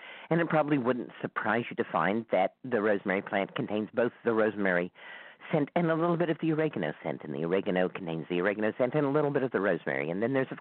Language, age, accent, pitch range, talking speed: English, 50-69, American, 110-160 Hz, 245 wpm